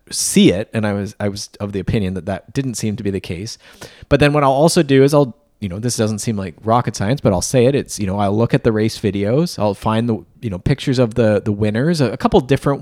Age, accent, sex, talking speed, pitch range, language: 20-39, American, male, 280 wpm, 105-135 Hz, English